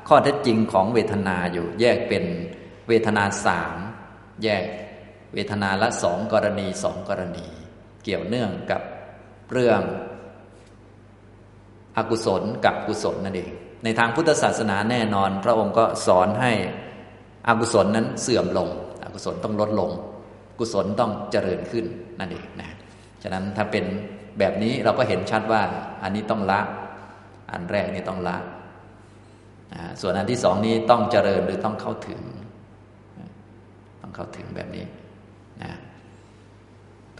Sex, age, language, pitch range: male, 20-39, Thai, 95-110 Hz